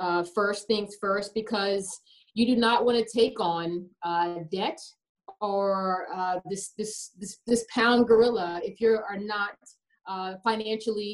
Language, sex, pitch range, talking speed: English, female, 195-235 Hz, 150 wpm